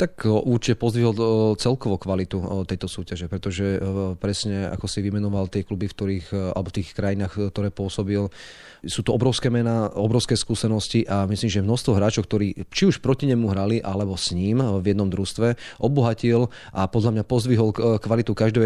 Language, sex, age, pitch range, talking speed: Slovak, male, 30-49, 100-115 Hz, 165 wpm